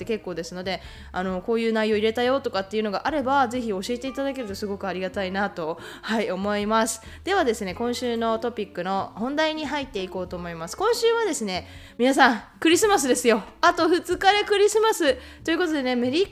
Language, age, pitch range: Japanese, 20-39, 195-265 Hz